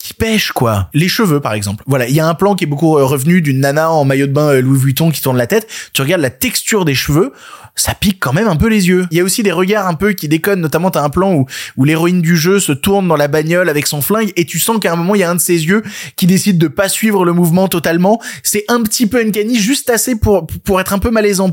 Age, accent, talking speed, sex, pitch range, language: 20-39, French, 290 wpm, male, 135-195 Hz, French